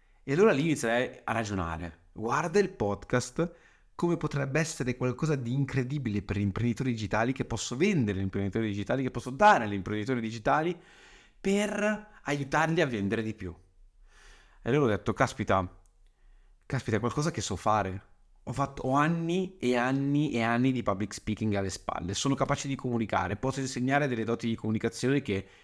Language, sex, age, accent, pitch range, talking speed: Italian, male, 30-49, native, 110-140 Hz, 165 wpm